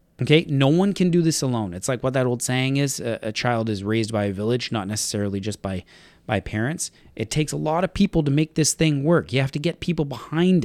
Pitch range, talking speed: 120-165 Hz, 255 wpm